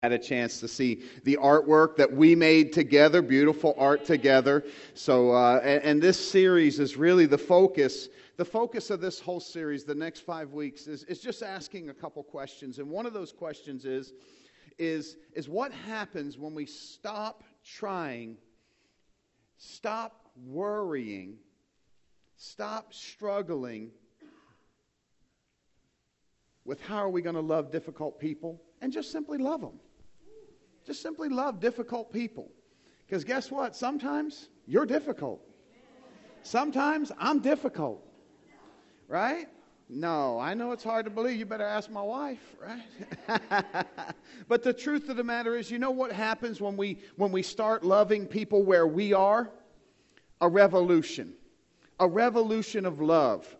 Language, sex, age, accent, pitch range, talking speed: English, male, 40-59, American, 155-230 Hz, 140 wpm